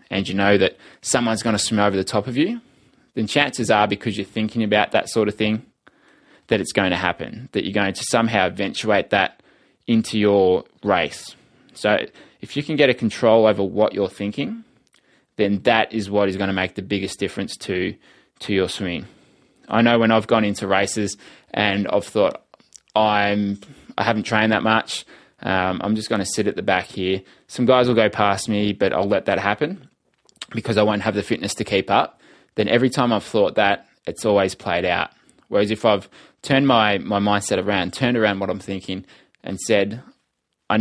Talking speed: 200 wpm